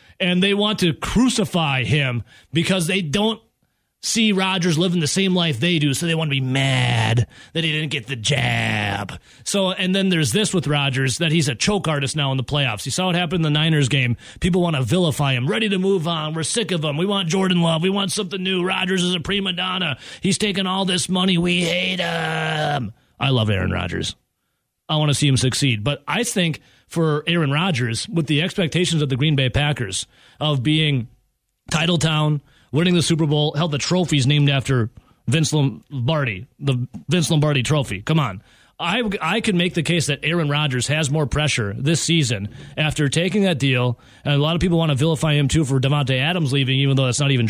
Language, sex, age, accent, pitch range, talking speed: English, male, 30-49, American, 135-180 Hz, 215 wpm